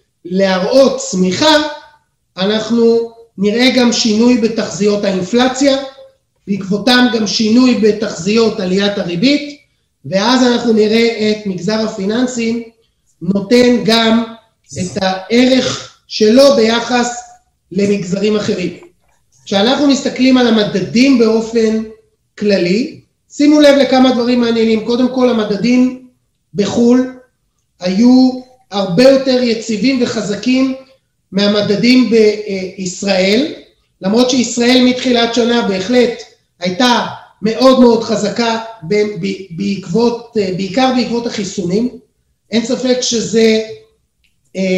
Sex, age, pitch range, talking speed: male, 30-49, 200-250 Hz, 90 wpm